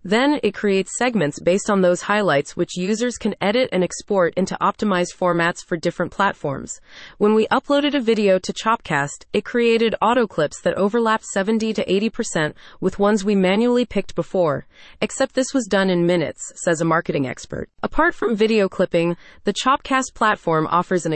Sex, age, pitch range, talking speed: female, 30-49, 175-225 Hz, 165 wpm